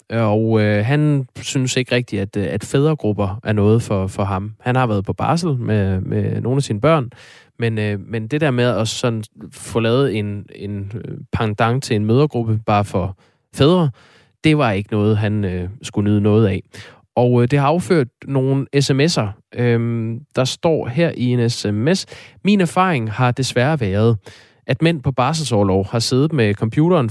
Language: Danish